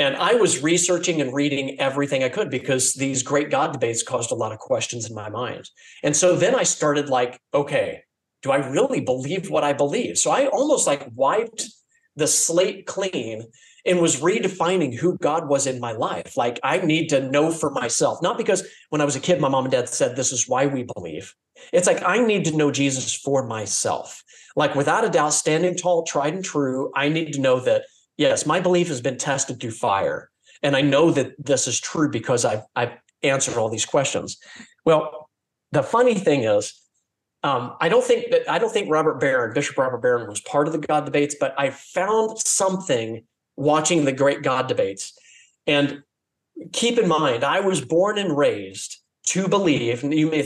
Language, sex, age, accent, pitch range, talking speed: English, male, 40-59, American, 135-190 Hz, 200 wpm